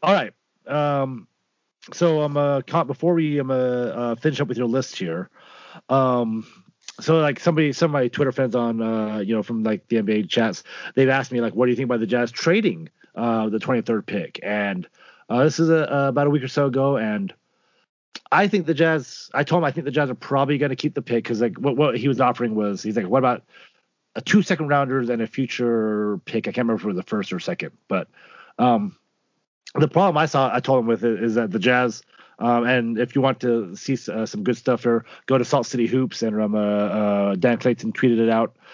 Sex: male